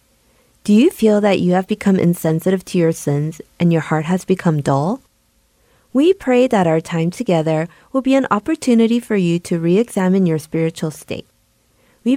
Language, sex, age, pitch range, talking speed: English, female, 30-49, 160-220 Hz, 175 wpm